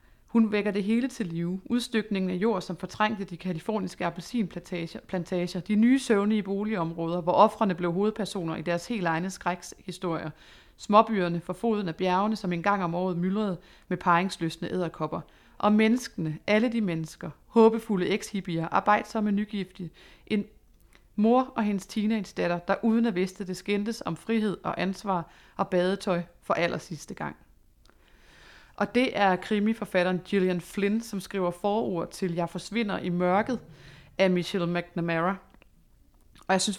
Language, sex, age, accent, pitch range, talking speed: Danish, female, 30-49, native, 175-210 Hz, 150 wpm